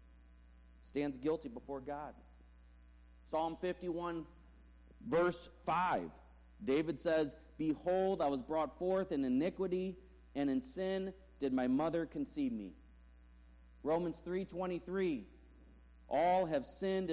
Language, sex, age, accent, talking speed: English, male, 40-59, American, 105 wpm